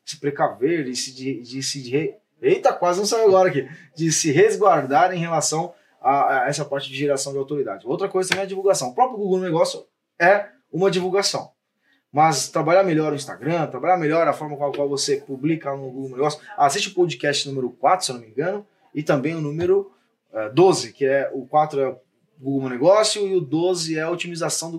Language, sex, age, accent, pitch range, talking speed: Portuguese, male, 20-39, Brazilian, 145-205 Hz, 215 wpm